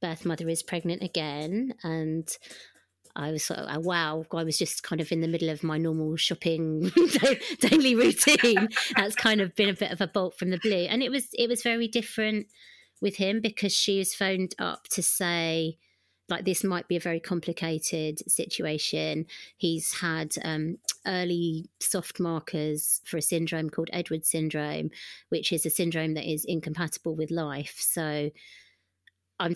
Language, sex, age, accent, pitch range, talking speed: English, female, 30-49, British, 160-200 Hz, 170 wpm